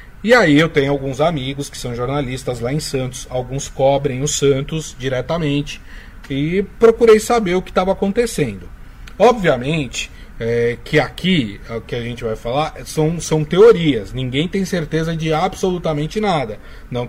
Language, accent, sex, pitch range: Portuguese, Brazilian, male, 135-190 Hz